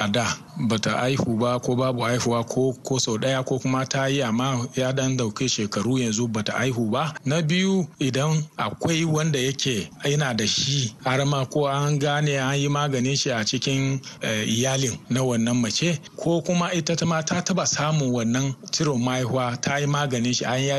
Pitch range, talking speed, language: 120-150 Hz, 155 wpm, English